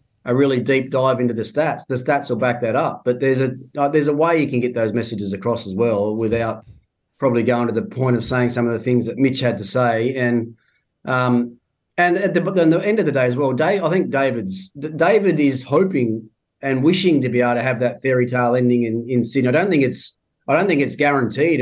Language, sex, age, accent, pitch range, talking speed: English, male, 30-49, Australian, 120-145 Hz, 240 wpm